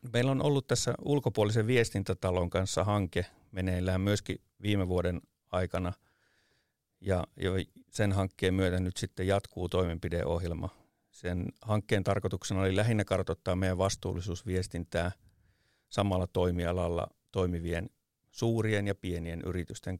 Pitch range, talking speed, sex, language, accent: 90-100 Hz, 110 wpm, male, Finnish, native